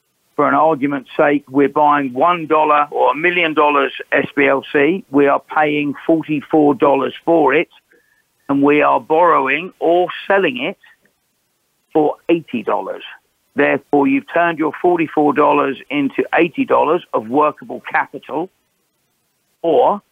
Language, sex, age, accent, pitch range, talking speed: English, male, 50-69, British, 135-160 Hz, 115 wpm